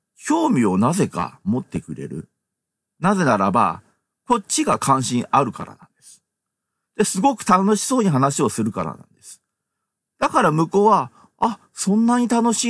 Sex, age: male, 40-59